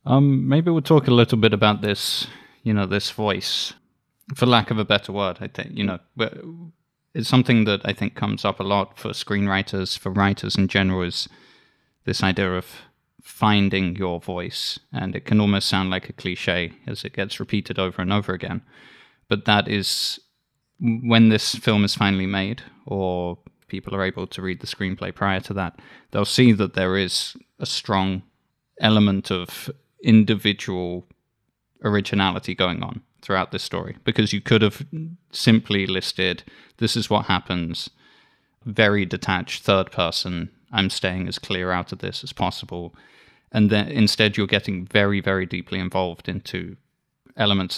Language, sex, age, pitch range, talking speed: English, male, 20-39, 95-115 Hz, 165 wpm